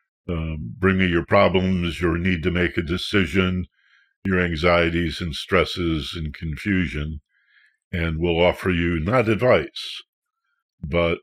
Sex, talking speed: male, 130 wpm